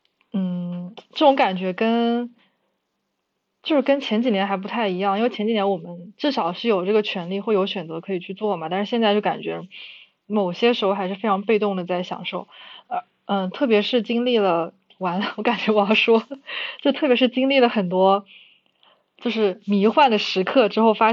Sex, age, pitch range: female, 20-39, 185-225 Hz